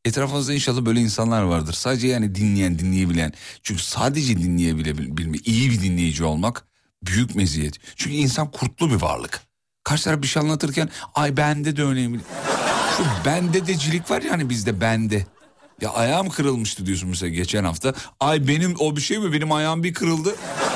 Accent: native